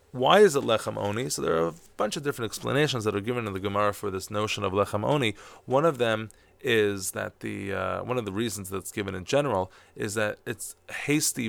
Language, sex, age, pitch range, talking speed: English, male, 20-39, 100-125 Hz, 230 wpm